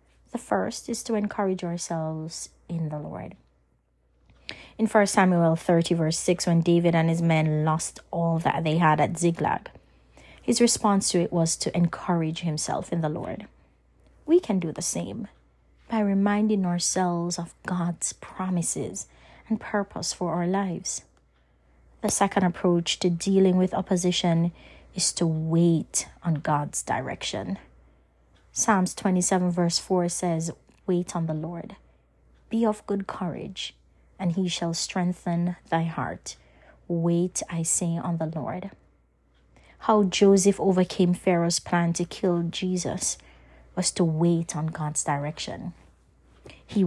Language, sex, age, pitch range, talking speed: English, female, 30-49, 160-190 Hz, 135 wpm